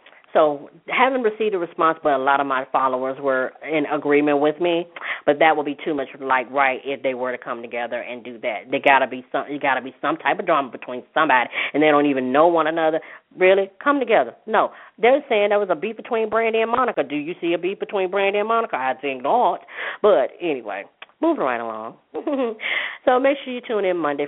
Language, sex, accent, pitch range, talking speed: English, female, American, 125-175 Hz, 225 wpm